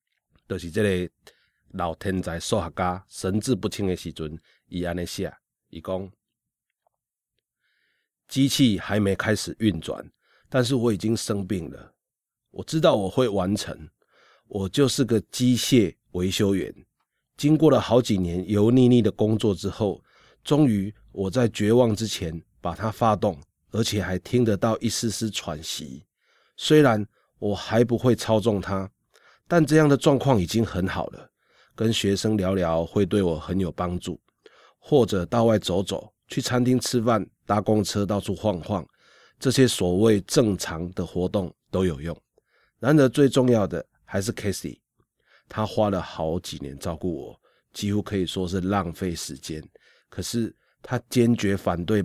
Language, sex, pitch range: Chinese, male, 90-115 Hz